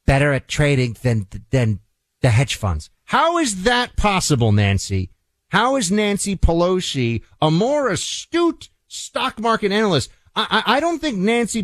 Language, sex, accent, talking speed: English, male, American, 150 wpm